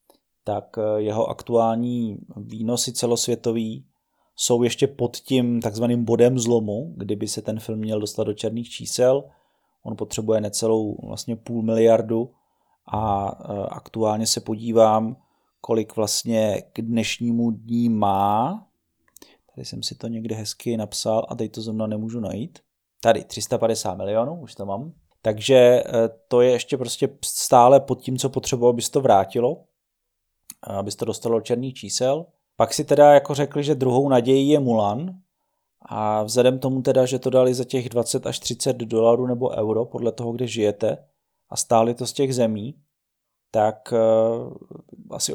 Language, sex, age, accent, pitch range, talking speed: Czech, male, 30-49, native, 110-125 Hz, 150 wpm